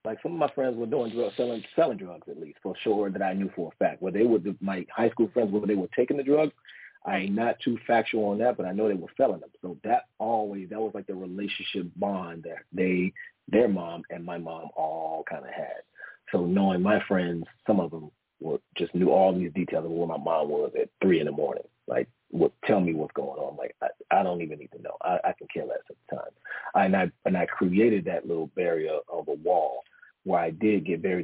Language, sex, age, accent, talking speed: English, male, 40-59, American, 250 wpm